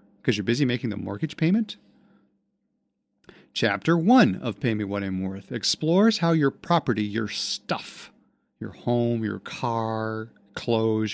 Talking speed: 140 wpm